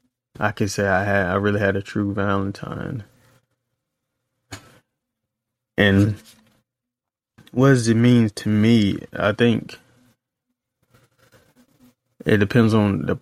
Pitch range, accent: 100-125 Hz, American